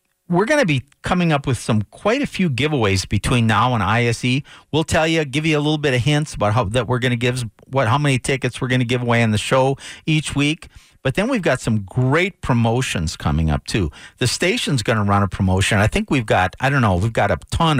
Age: 50-69